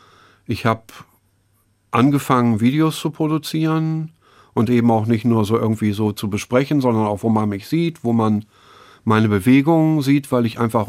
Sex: male